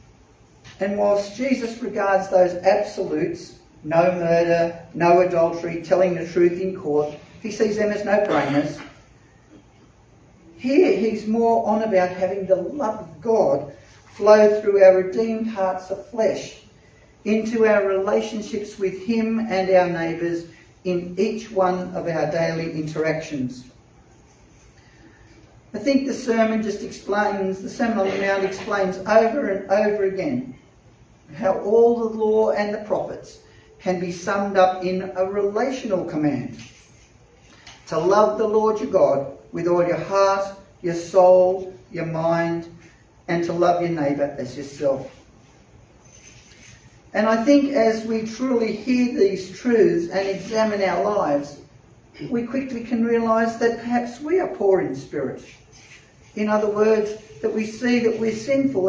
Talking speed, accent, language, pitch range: 140 wpm, Australian, English, 165-215 Hz